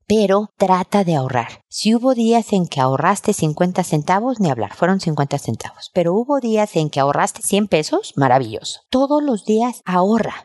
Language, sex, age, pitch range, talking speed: Spanish, female, 50-69, 155-210 Hz, 170 wpm